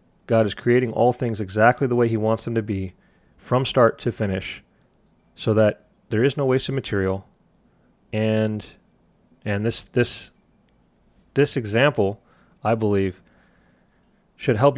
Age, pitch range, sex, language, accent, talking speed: 30-49, 105-125 Hz, male, English, American, 140 wpm